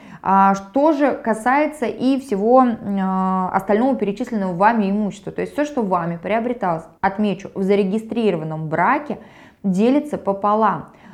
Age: 20-39